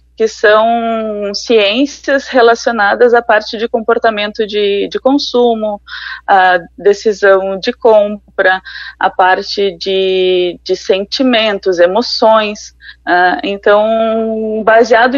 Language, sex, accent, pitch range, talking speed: Portuguese, female, Brazilian, 210-260 Hz, 90 wpm